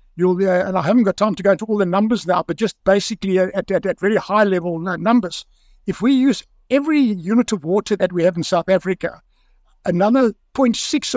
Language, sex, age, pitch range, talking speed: English, male, 60-79, 180-225 Hz, 205 wpm